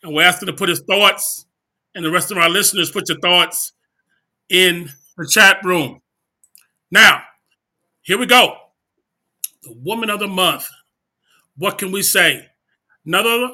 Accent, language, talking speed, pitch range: American, English, 150 wpm, 190-240 Hz